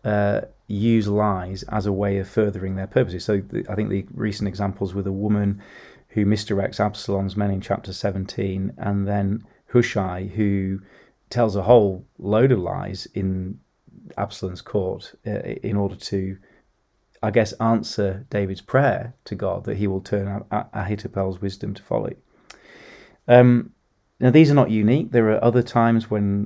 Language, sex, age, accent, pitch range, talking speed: English, male, 30-49, British, 100-115 Hz, 155 wpm